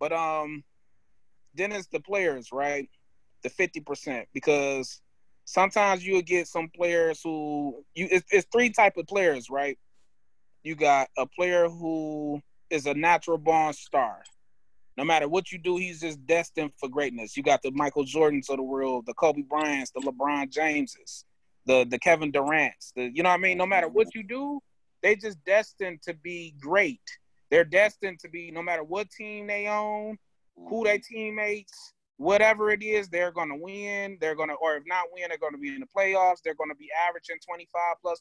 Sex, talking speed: male, 190 wpm